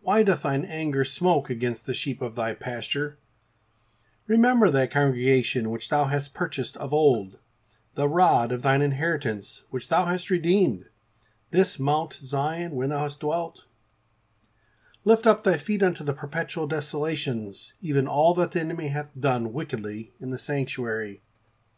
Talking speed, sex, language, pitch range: 150 wpm, male, English, 115-150 Hz